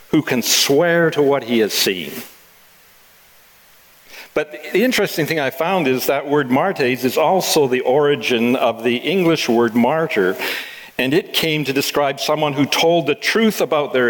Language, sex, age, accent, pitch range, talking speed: English, male, 60-79, American, 120-160 Hz, 165 wpm